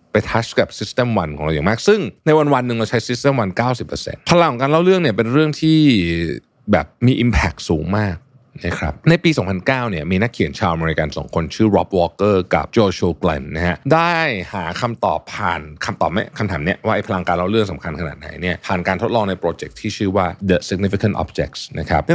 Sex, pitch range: male, 85-125 Hz